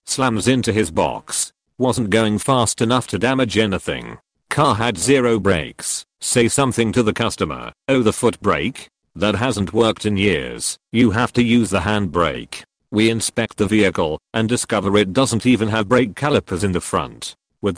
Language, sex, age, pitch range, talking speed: English, male, 40-59, 105-125 Hz, 175 wpm